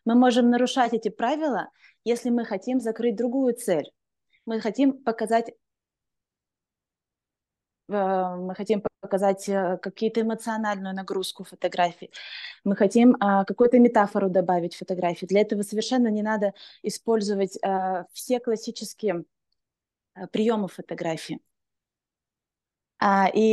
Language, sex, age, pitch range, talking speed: Russian, female, 20-39, 200-240 Hz, 95 wpm